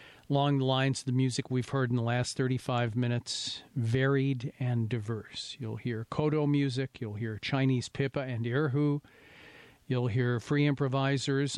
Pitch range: 120-145 Hz